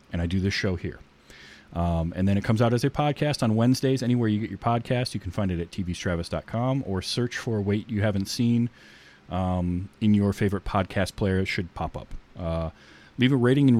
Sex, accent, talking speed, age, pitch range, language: male, American, 220 wpm, 30-49, 85-120 Hz, English